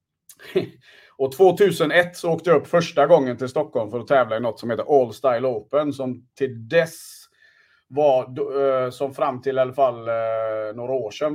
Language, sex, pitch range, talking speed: Swedish, male, 130-180 Hz, 175 wpm